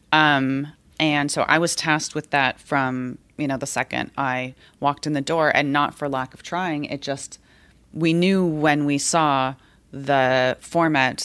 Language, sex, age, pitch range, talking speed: English, female, 30-49, 135-150 Hz, 175 wpm